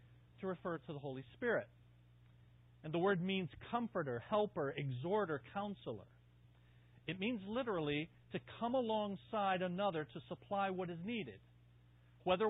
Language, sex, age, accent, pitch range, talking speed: English, male, 40-59, American, 120-195 Hz, 130 wpm